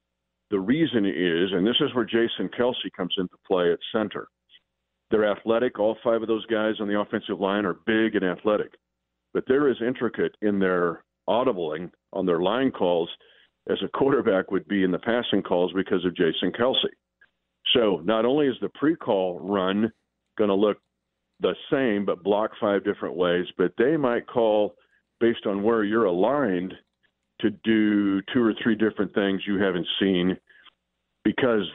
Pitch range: 90-110 Hz